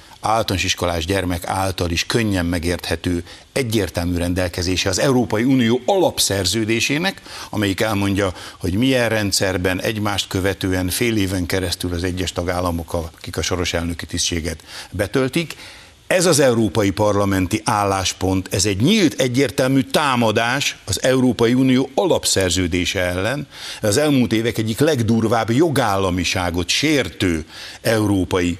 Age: 60-79